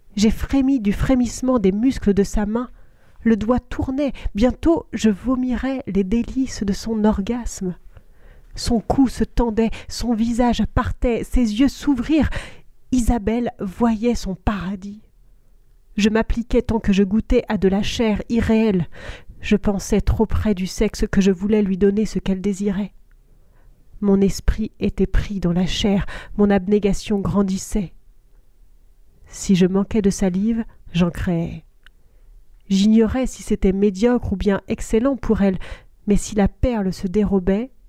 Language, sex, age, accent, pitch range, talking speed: French, female, 40-59, French, 190-230 Hz, 145 wpm